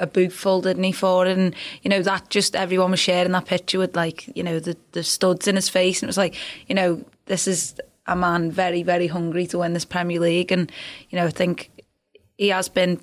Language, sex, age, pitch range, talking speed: English, female, 20-39, 175-200 Hz, 240 wpm